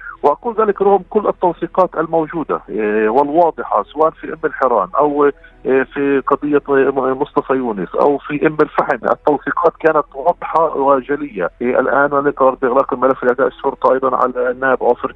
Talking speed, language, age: 135 wpm, Arabic, 40-59